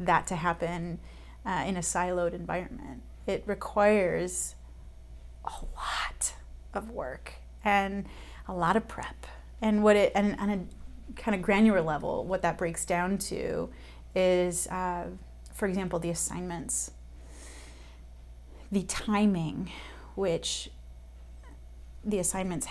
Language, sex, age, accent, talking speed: English, female, 30-49, American, 120 wpm